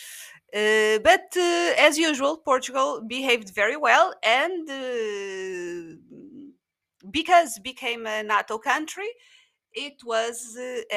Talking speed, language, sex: 105 wpm, English, female